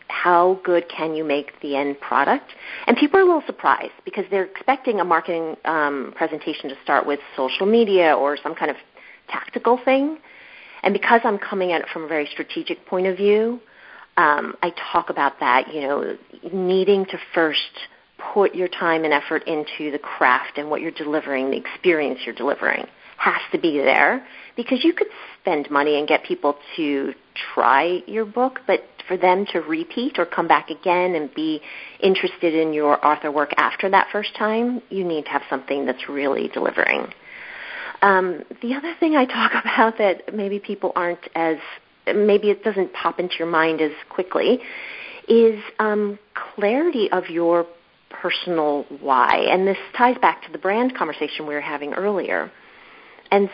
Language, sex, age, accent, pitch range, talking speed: English, female, 40-59, American, 155-225 Hz, 175 wpm